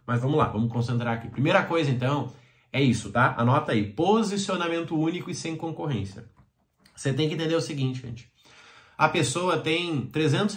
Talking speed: 170 wpm